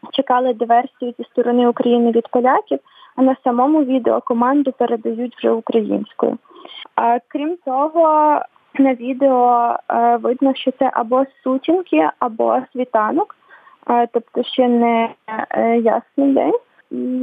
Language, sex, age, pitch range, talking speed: Ukrainian, female, 20-39, 235-270 Hz, 110 wpm